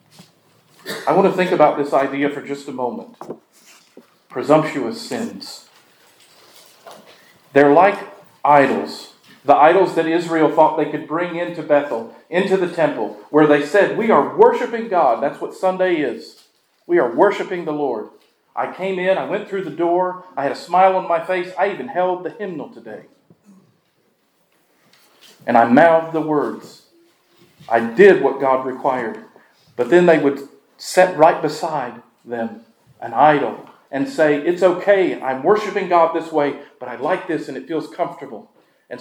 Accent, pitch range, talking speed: American, 150-190 Hz, 160 wpm